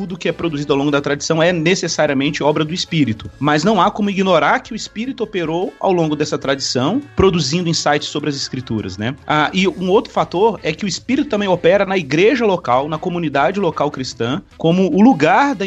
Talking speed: 205 wpm